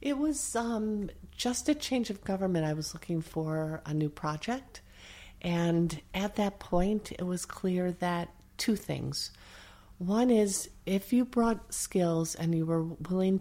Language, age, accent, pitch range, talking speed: English, 50-69, American, 155-185 Hz, 155 wpm